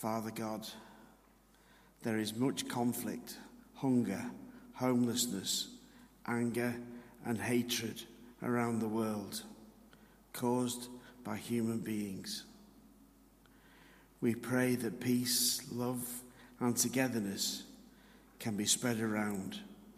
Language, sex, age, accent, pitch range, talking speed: English, male, 50-69, British, 115-125 Hz, 85 wpm